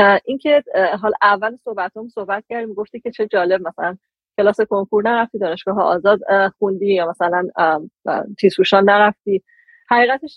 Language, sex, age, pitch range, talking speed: Persian, female, 30-49, 190-230 Hz, 125 wpm